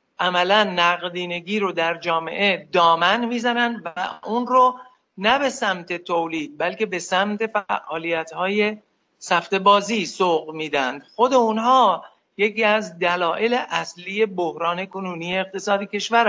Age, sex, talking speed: 50-69, male, 120 wpm